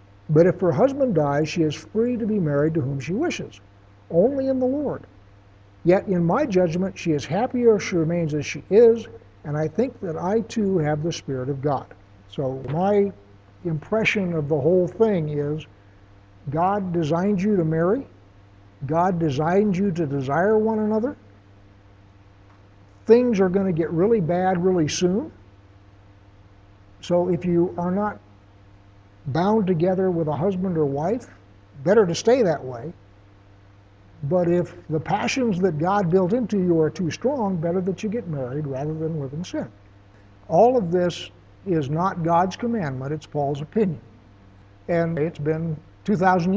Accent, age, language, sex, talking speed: American, 60-79, English, male, 160 wpm